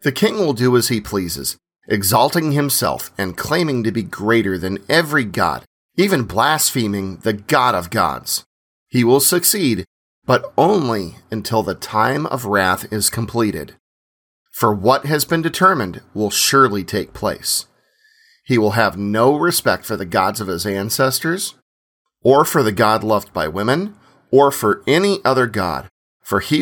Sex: male